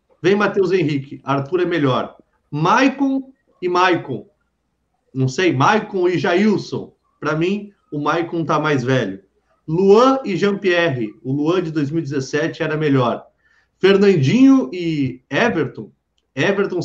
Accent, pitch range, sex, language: Brazilian, 145-185 Hz, male, Portuguese